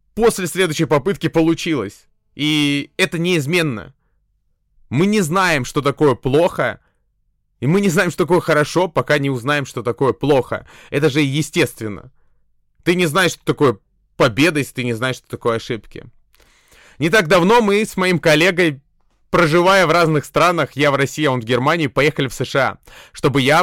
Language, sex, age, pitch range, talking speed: Russian, male, 20-39, 125-175 Hz, 165 wpm